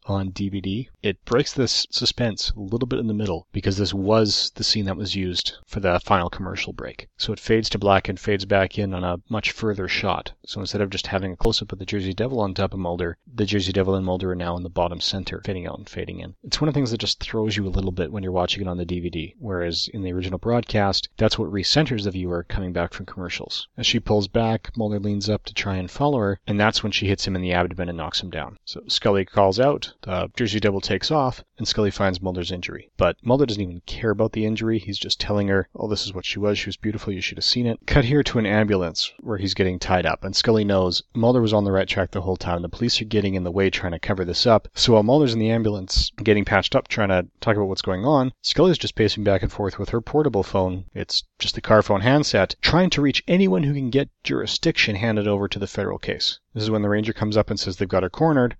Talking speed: 265 wpm